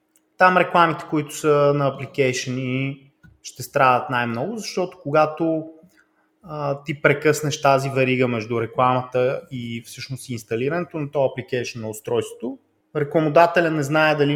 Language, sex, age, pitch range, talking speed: Bulgarian, male, 20-39, 130-185 Hz, 125 wpm